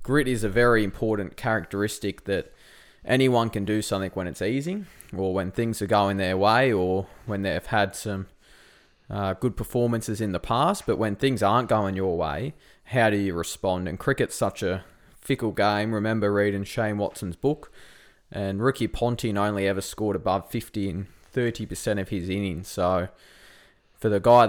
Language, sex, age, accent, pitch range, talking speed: English, male, 20-39, Australian, 95-115 Hz, 175 wpm